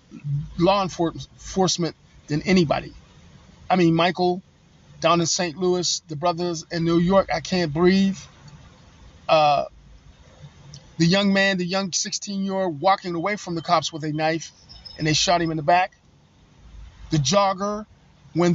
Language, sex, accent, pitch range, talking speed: English, male, American, 155-190 Hz, 140 wpm